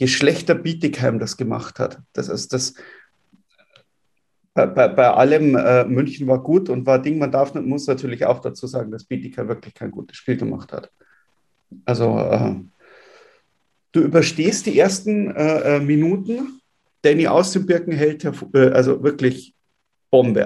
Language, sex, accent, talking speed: German, male, German, 155 wpm